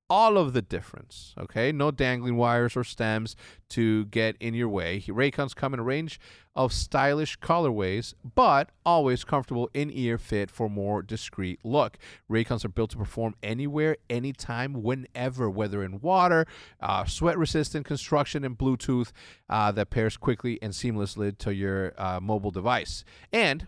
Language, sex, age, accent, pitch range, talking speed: English, male, 40-59, American, 110-145 Hz, 155 wpm